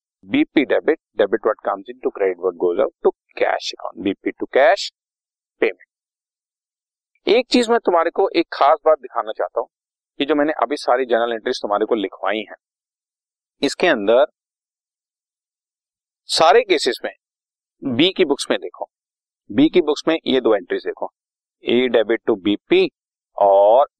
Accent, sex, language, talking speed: native, male, Hindi, 100 wpm